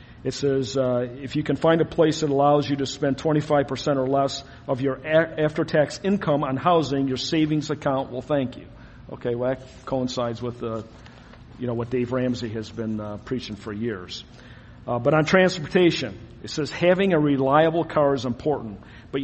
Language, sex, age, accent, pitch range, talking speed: English, male, 50-69, American, 120-155 Hz, 185 wpm